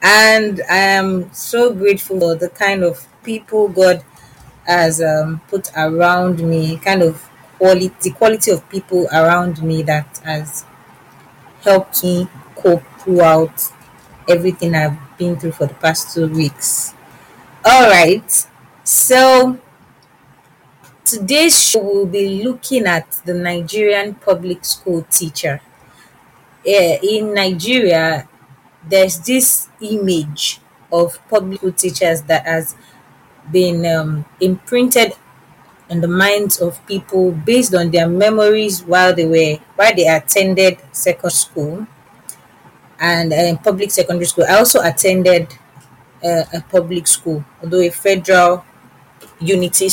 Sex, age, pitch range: female, 30-49, 160-195 Hz